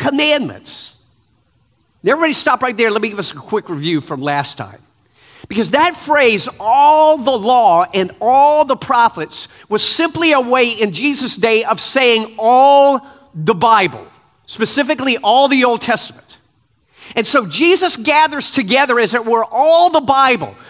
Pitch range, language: 210-295 Hz, English